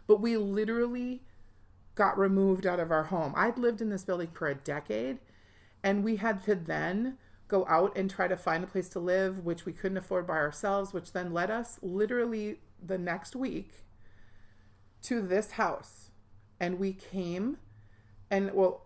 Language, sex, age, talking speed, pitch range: English, female, 40-59, 170 wpm, 160-205 Hz